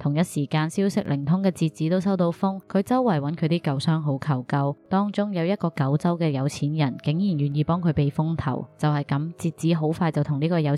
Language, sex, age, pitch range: Chinese, female, 20-39, 150-180 Hz